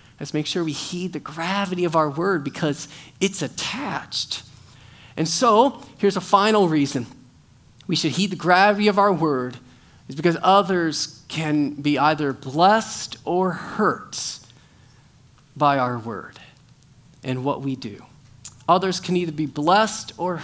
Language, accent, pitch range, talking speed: English, American, 140-195 Hz, 145 wpm